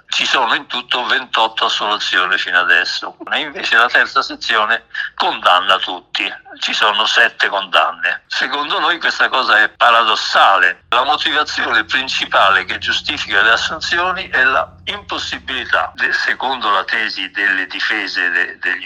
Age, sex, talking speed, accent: 60-79, male, 130 wpm, native